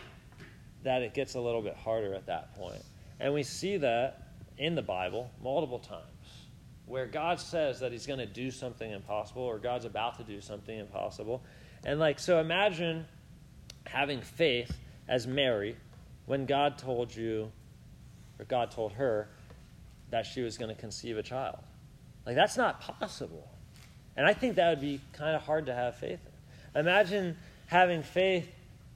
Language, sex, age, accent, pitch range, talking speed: English, male, 40-59, American, 120-160 Hz, 165 wpm